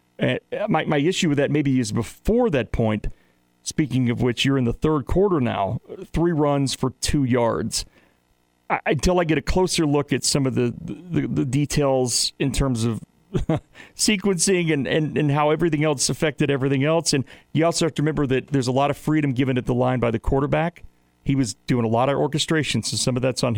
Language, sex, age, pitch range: English, male, 40-59, 120-155 Hz